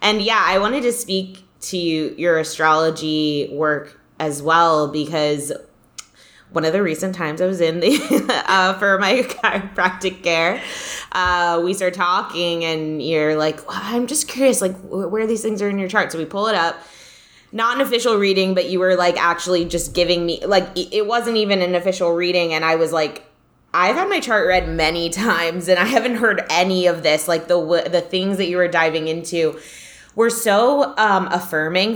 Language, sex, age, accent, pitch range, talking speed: English, female, 20-39, American, 160-195 Hz, 185 wpm